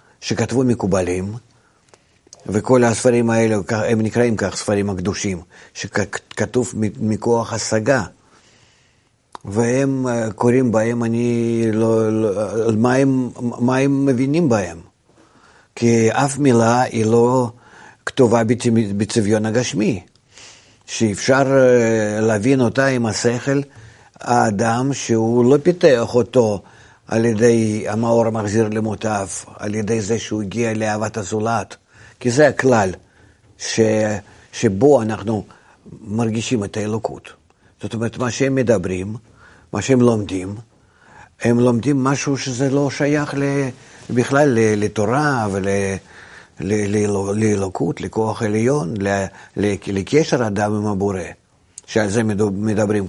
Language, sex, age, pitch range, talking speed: Hebrew, male, 50-69, 105-125 Hz, 105 wpm